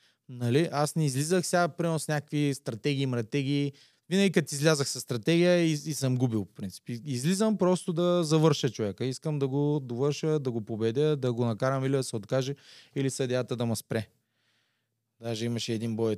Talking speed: 180 wpm